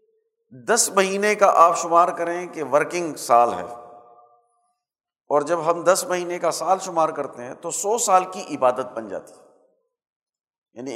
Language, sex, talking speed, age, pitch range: Urdu, male, 160 wpm, 50-69, 150-220 Hz